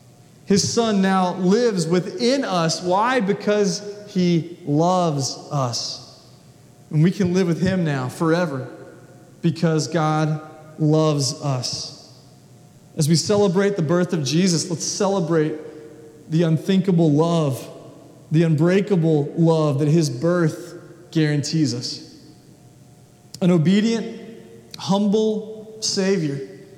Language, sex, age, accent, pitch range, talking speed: English, male, 30-49, American, 150-195 Hz, 105 wpm